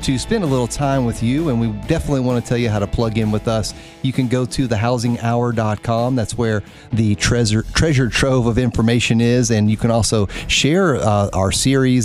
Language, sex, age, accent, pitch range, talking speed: English, male, 40-59, American, 105-125 Hz, 210 wpm